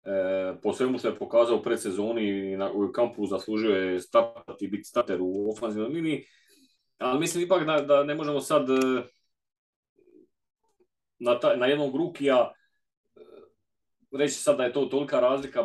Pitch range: 110-145 Hz